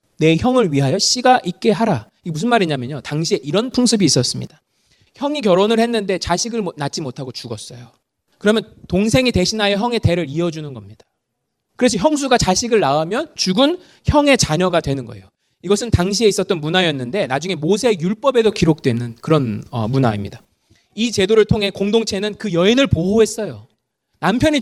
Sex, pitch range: male, 160-230 Hz